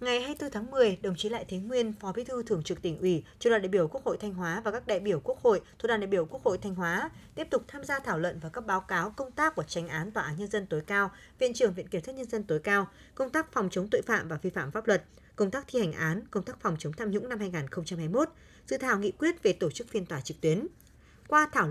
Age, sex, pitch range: 20-39, female, 180-245 Hz